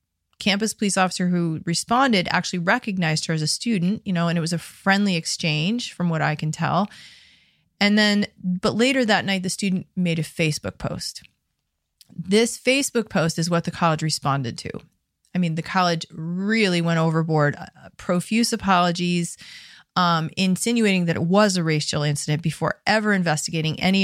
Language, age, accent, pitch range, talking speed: English, 30-49, American, 160-200 Hz, 165 wpm